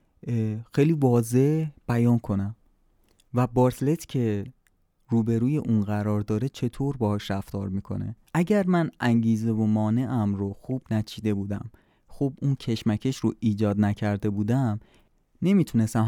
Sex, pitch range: male, 105-125 Hz